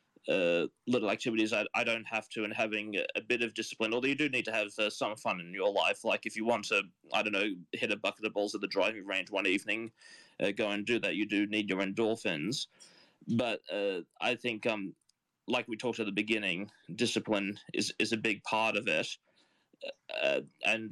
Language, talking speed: English, 220 wpm